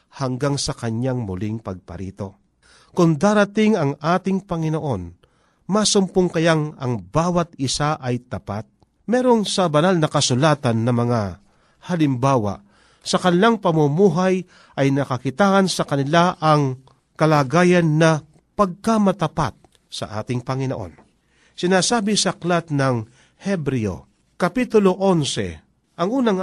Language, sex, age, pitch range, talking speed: Filipino, male, 40-59, 130-180 Hz, 110 wpm